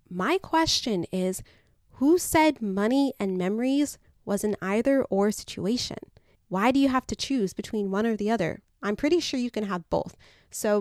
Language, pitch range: English, 190-240 Hz